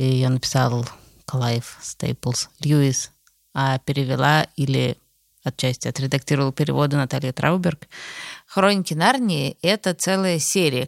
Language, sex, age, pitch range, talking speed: Russian, female, 20-39, 145-175 Hz, 100 wpm